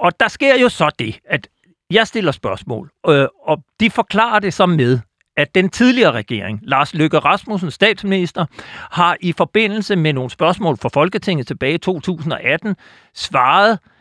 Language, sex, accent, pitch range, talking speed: Danish, male, native, 145-195 Hz, 155 wpm